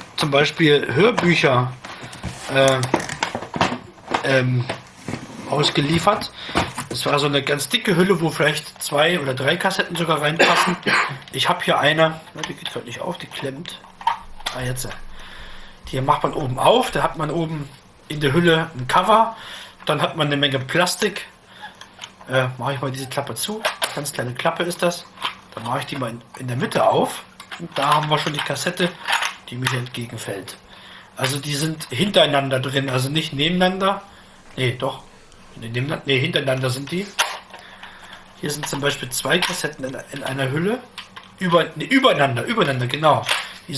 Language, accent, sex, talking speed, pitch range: German, German, male, 160 wpm, 130-170 Hz